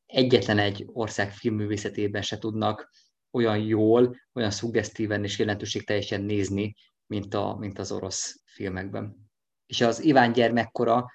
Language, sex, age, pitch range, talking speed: Hungarian, male, 20-39, 105-125 Hz, 125 wpm